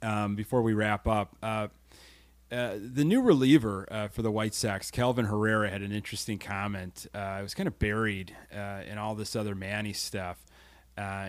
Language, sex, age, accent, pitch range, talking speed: English, male, 30-49, American, 100-130 Hz, 185 wpm